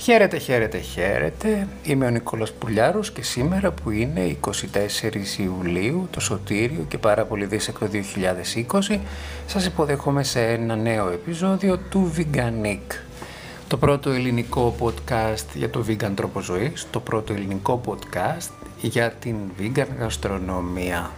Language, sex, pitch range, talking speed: Greek, male, 95-130 Hz, 130 wpm